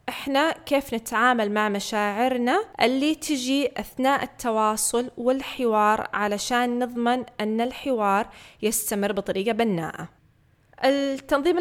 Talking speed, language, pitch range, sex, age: 95 wpm, Arabic, 225-285 Hz, female, 20-39